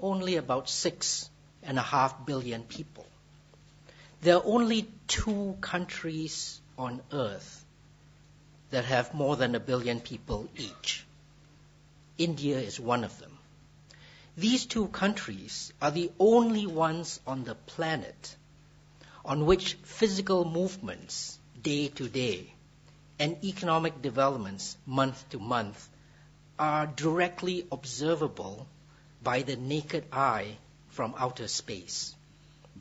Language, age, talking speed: English, 60-79, 105 wpm